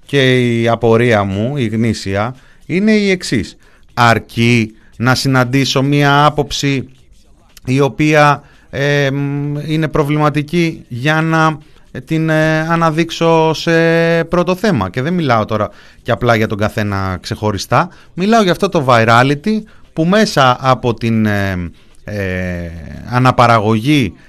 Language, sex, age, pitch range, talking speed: Greek, male, 30-49, 110-175 Hz, 110 wpm